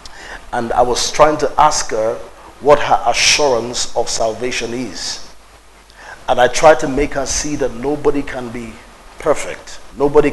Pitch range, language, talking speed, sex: 120-145 Hz, English, 150 wpm, male